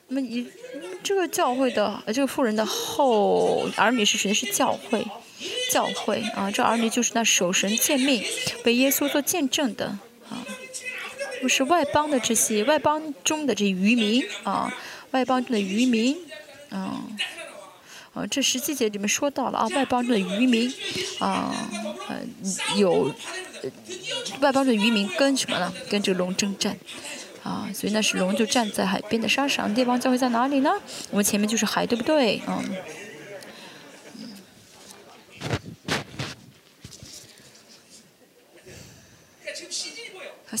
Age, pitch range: 20-39, 210-280 Hz